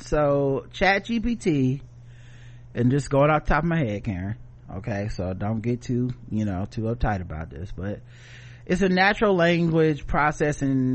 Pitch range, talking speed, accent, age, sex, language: 115-140 Hz, 165 wpm, American, 30-49, male, English